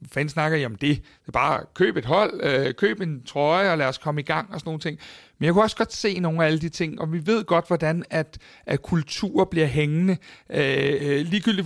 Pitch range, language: 150-180 Hz, Danish